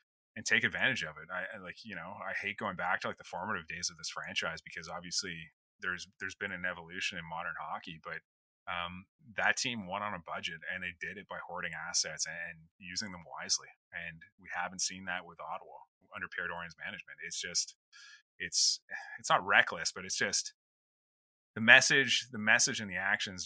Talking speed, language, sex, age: 195 wpm, English, male, 30-49